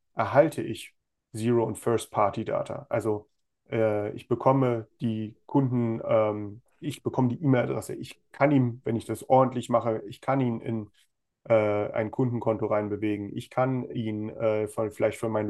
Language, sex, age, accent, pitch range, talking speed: German, male, 30-49, German, 110-130 Hz, 150 wpm